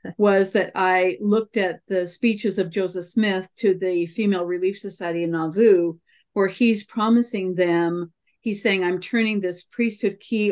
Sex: female